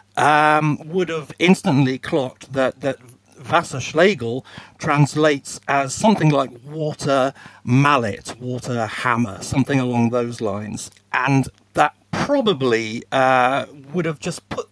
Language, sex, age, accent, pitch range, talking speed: English, male, 50-69, British, 125-150 Hz, 120 wpm